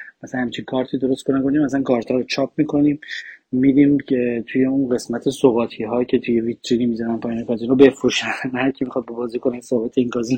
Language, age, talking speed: Persian, 30-49, 190 wpm